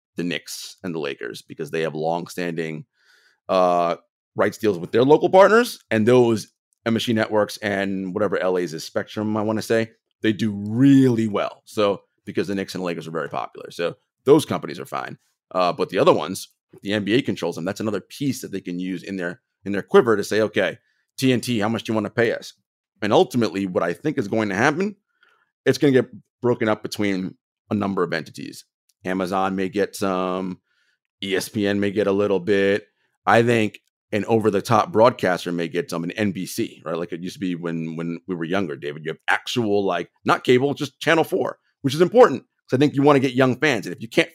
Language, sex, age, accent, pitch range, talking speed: English, male, 30-49, American, 95-130 Hz, 215 wpm